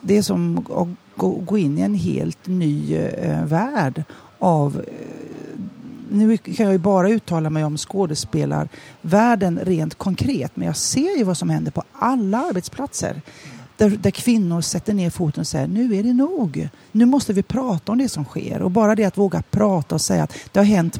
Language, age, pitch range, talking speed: Swedish, 40-59, 150-200 Hz, 185 wpm